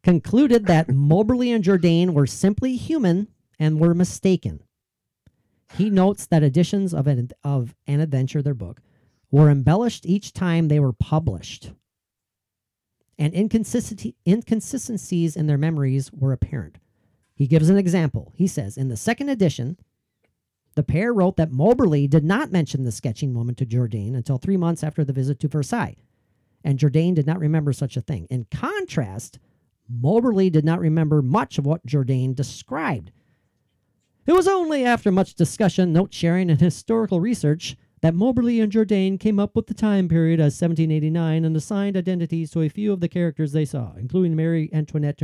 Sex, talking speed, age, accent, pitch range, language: male, 160 wpm, 40-59, American, 130-180 Hz, English